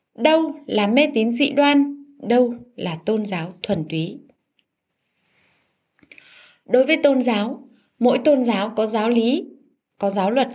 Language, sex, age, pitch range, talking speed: Vietnamese, female, 20-39, 205-280 Hz, 140 wpm